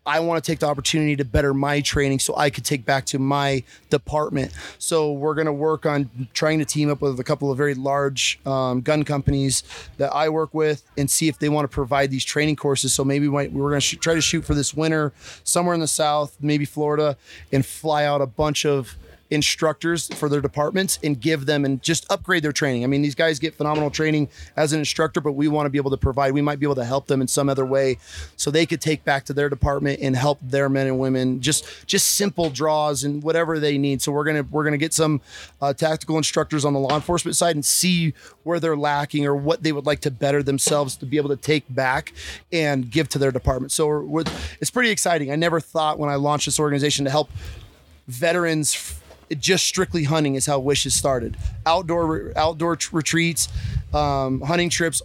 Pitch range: 140-155 Hz